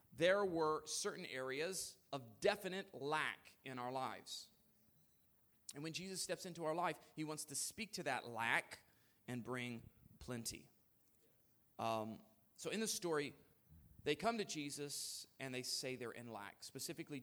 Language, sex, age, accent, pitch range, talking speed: English, male, 30-49, American, 125-170 Hz, 150 wpm